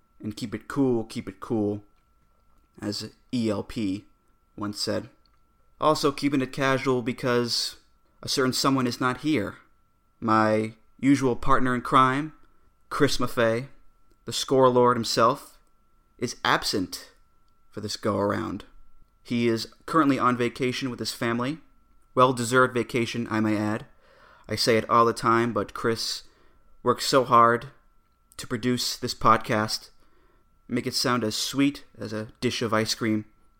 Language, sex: English, male